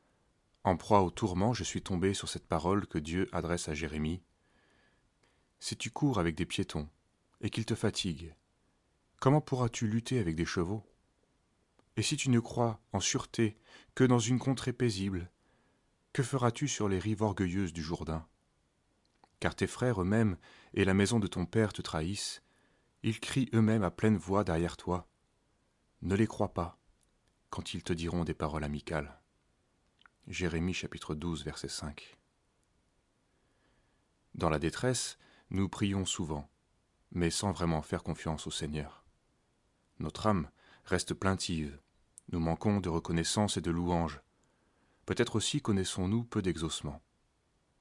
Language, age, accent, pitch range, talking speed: French, 30-49, French, 80-110 Hz, 145 wpm